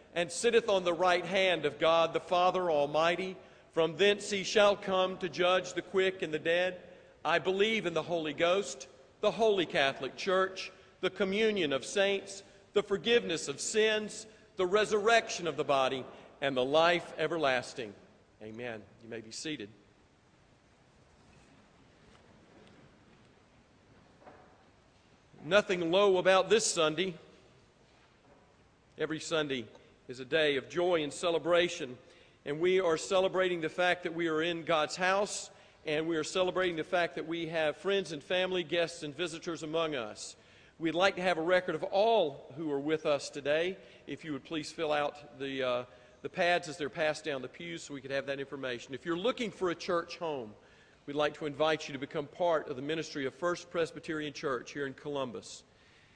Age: 50-69